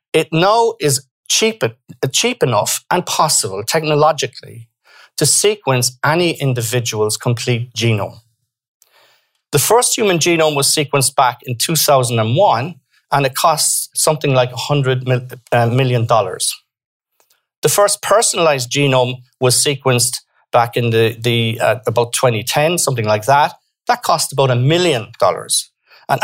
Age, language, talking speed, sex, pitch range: 40-59, English, 135 wpm, male, 125-160 Hz